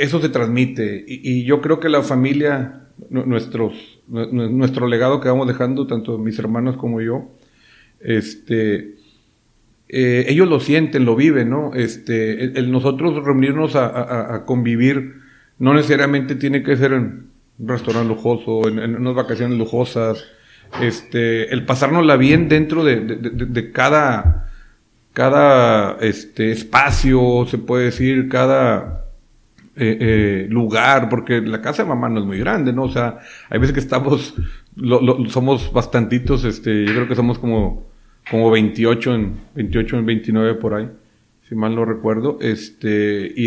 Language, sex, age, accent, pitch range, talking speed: Spanish, male, 40-59, Mexican, 110-135 Hz, 155 wpm